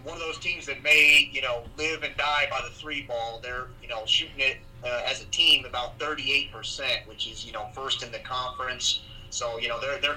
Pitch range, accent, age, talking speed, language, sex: 120-145 Hz, American, 30-49, 230 wpm, English, male